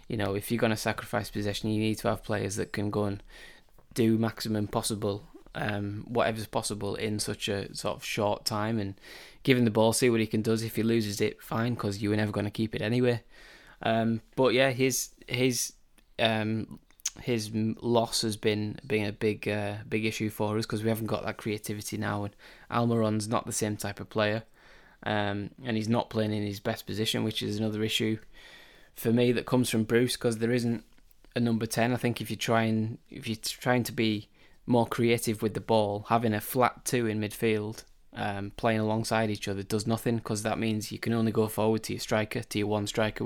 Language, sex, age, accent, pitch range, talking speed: English, male, 10-29, British, 105-115 Hz, 210 wpm